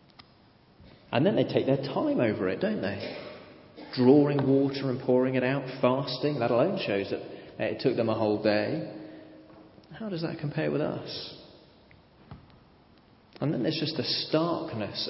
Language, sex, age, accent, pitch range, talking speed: English, male, 30-49, British, 115-140 Hz, 155 wpm